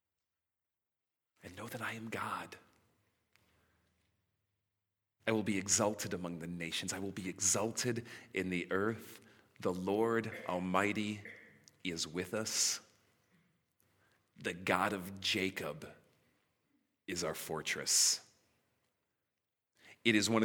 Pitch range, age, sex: 95-110 Hz, 40-59, male